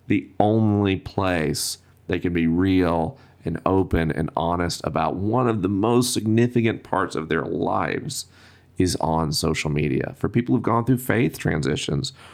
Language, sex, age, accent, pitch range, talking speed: English, male, 40-59, American, 85-120 Hz, 155 wpm